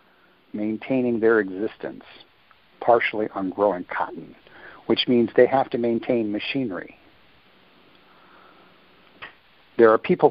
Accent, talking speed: American, 100 wpm